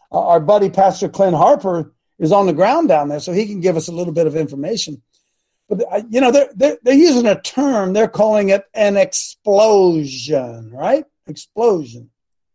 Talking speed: 175 wpm